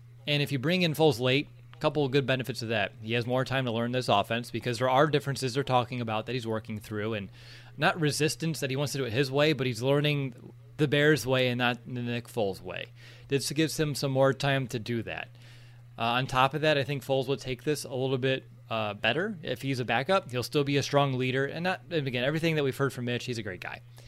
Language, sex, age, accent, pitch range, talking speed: English, male, 20-39, American, 120-145 Hz, 260 wpm